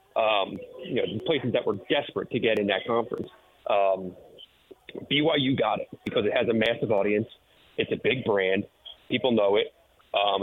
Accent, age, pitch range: American, 30-49, 100-125 Hz